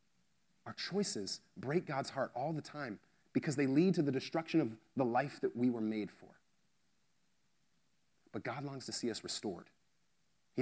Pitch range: 110-145 Hz